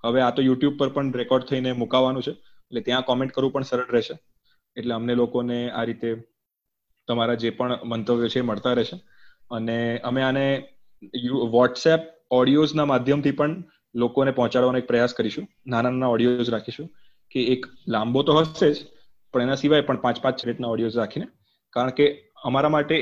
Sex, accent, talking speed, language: male, native, 150 wpm, Gujarati